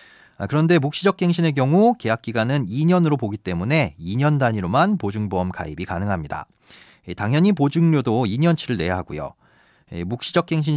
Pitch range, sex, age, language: 110-165 Hz, male, 30-49, Korean